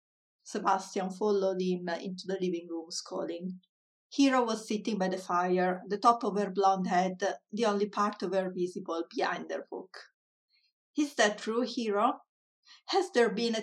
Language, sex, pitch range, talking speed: English, female, 185-230 Hz, 165 wpm